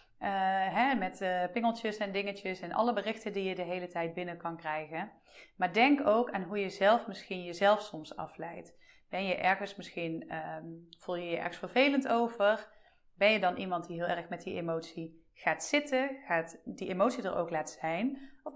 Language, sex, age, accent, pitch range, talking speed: Dutch, female, 30-49, Dutch, 180-250 Hz, 190 wpm